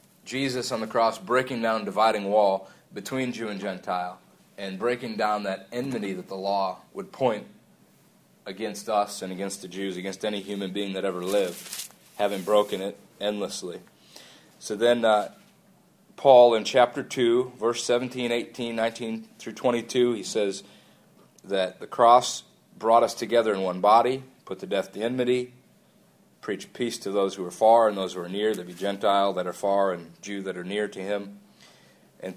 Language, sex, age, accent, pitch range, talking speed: English, male, 30-49, American, 95-120 Hz, 175 wpm